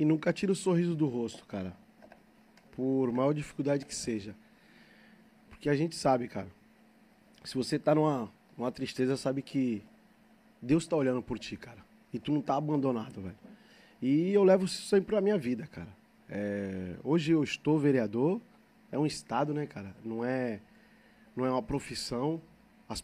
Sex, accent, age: male, Brazilian, 20-39